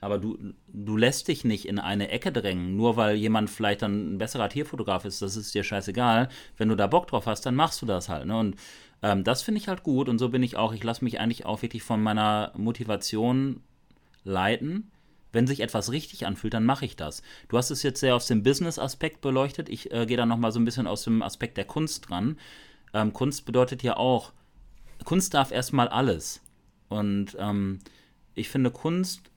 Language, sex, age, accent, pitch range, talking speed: German, male, 30-49, German, 105-130 Hz, 210 wpm